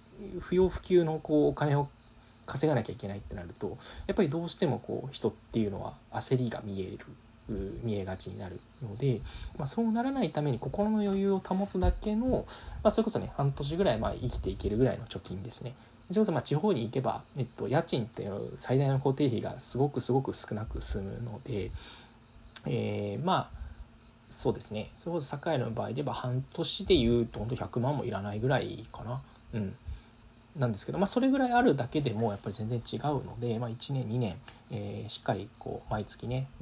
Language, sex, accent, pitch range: Japanese, male, native, 110-145 Hz